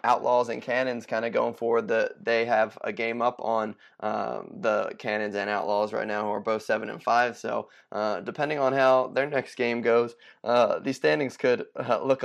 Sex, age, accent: male, 20-39, American